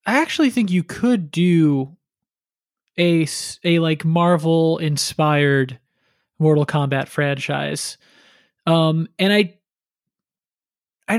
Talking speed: 95 wpm